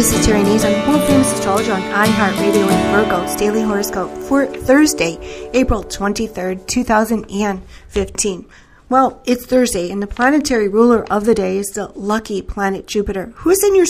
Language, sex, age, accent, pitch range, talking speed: English, female, 40-59, American, 200-235 Hz, 160 wpm